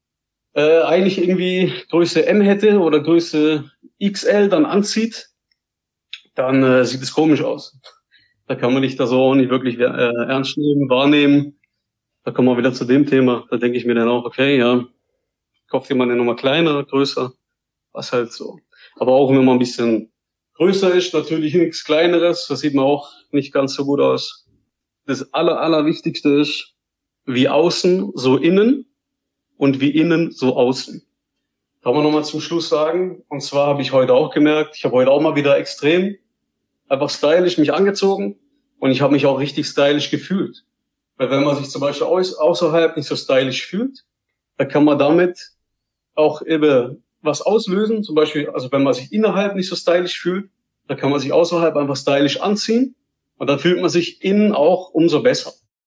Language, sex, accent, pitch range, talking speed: German, male, German, 130-175 Hz, 180 wpm